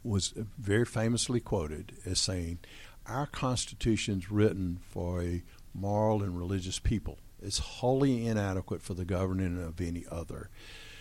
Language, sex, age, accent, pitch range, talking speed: English, male, 60-79, American, 95-115 Hz, 135 wpm